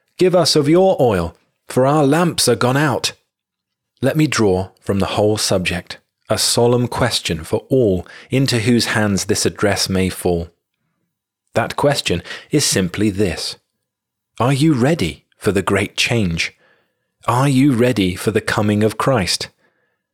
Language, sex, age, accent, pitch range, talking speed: English, male, 30-49, British, 95-135 Hz, 150 wpm